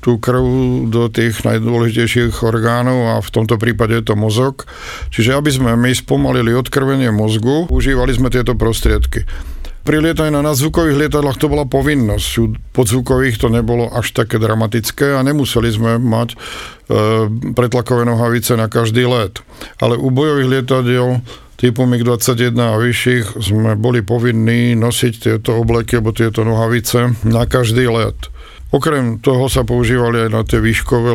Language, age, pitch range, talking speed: Slovak, 50-69, 110-125 Hz, 150 wpm